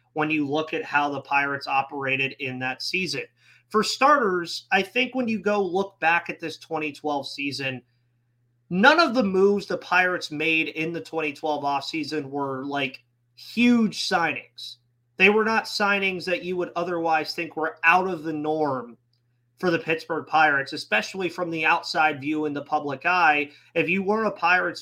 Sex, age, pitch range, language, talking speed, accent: male, 30-49, 140-185 Hz, English, 170 wpm, American